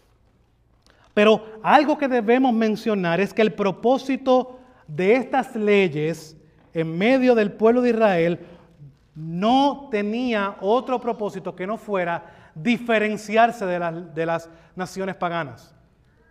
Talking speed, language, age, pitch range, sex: 115 wpm, Spanish, 30-49, 180-235 Hz, male